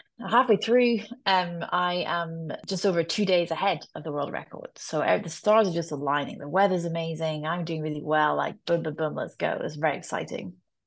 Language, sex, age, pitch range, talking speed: English, female, 20-39, 160-205 Hz, 205 wpm